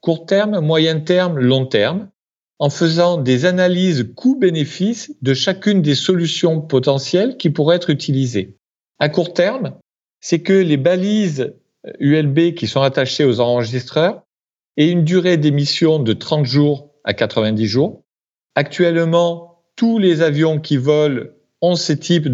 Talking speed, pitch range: 140 wpm, 130-180 Hz